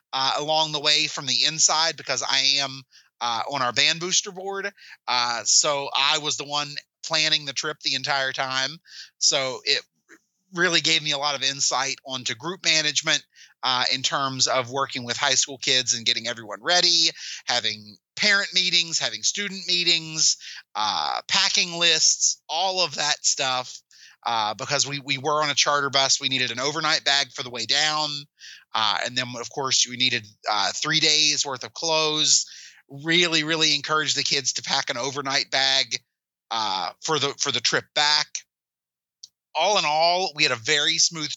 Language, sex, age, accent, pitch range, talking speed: English, male, 30-49, American, 130-155 Hz, 175 wpm